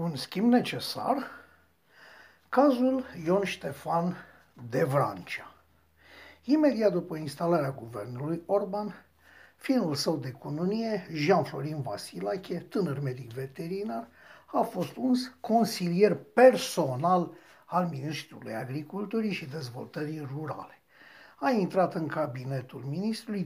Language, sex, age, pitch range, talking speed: Romanian, male, 50-69, 150-210 Hz, 95 wpm